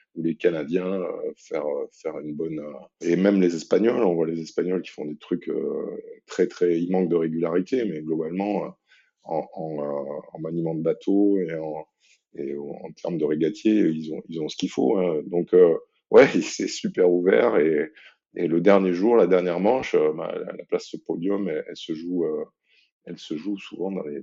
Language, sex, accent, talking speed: French, male, French, 185 wpm